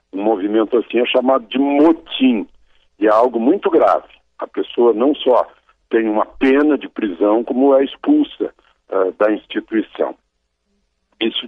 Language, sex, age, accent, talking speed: Portuguese, male, 60-79, Brazilian, 145 wpm